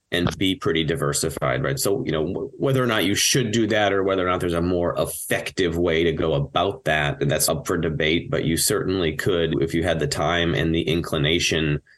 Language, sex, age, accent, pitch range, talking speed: English, male, 30-49, American, 80-105 Hz, 225 wpm